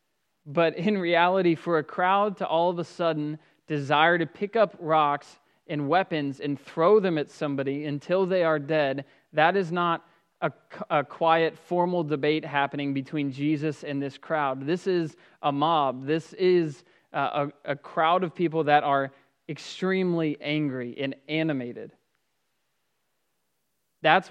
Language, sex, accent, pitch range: English, male, American, 145-175 Hz